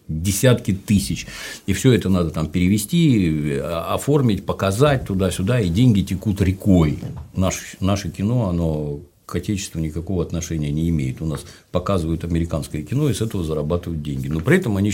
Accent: native